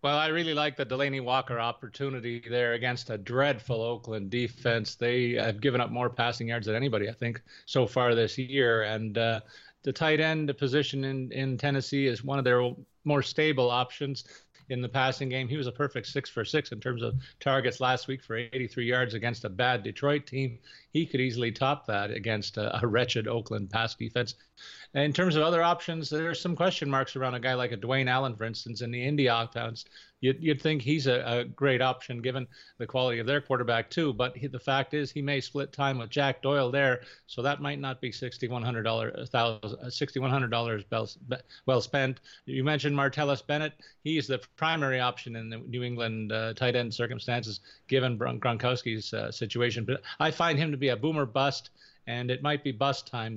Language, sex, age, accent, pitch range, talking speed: English, male, 40-59, American, 120-140 Hz, 195 wpm